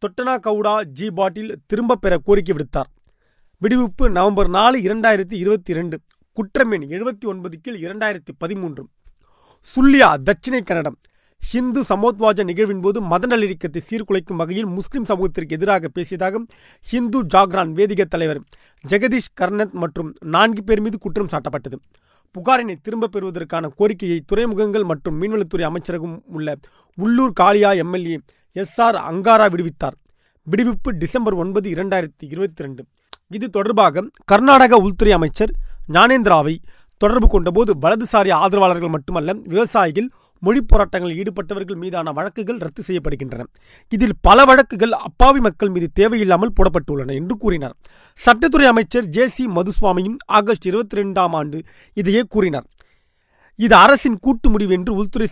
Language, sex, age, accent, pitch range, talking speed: Tamil, male, 30-49, native, 175-225 Hz, 115 wpm